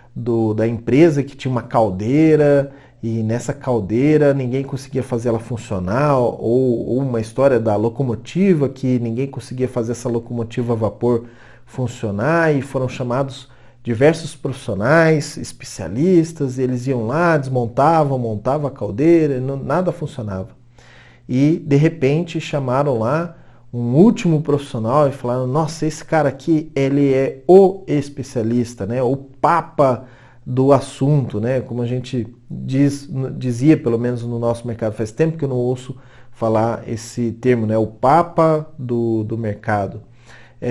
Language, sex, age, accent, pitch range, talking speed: Portuguese, male, 40-59, Brazilian, 120-145 Hz, 135 wpm